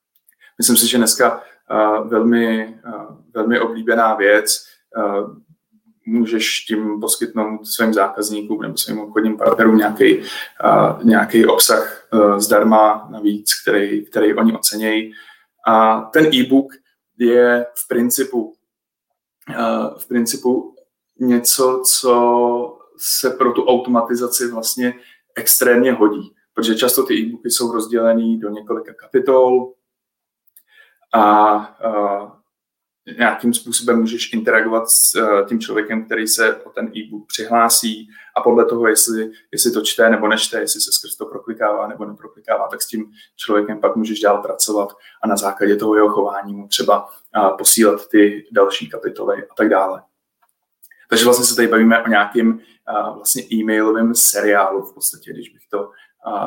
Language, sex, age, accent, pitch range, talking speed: Czech, male, 20-39, native, 110-125 Hz, 130 wpm